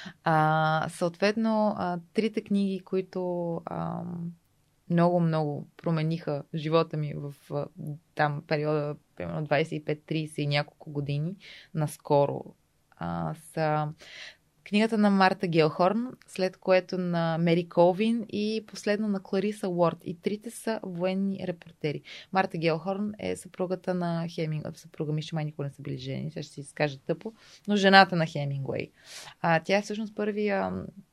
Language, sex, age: Bulgarian, female, 20-39